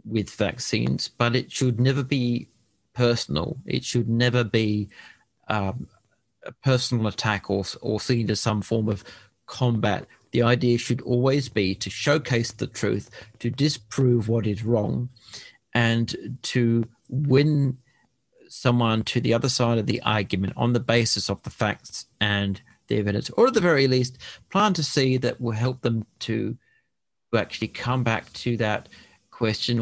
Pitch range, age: 110-125 Hz, 40-59